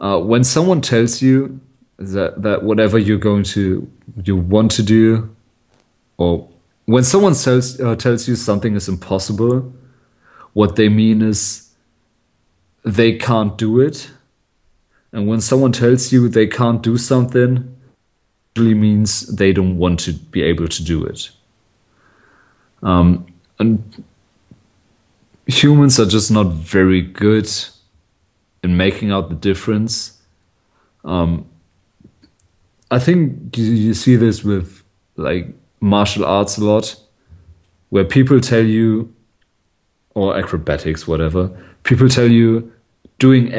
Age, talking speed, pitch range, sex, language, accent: 40-59, 125 wpm, 90-115 Hz, male, English, German